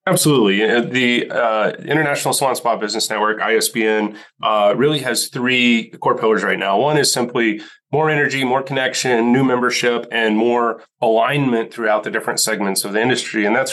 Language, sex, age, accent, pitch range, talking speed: English, male, 30-49, American, 105-120 Hz, 165 wpm